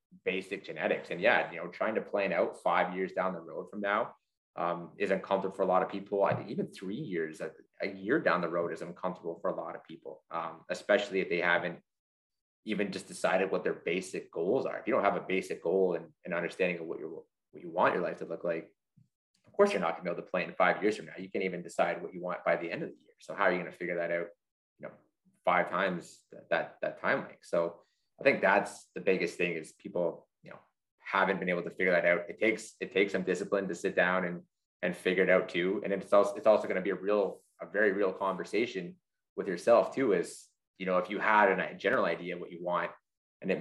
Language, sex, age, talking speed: English, male, 20-39, 255 wpm